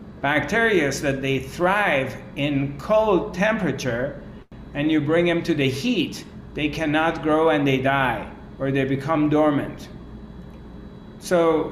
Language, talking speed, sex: English, 140 wpm, male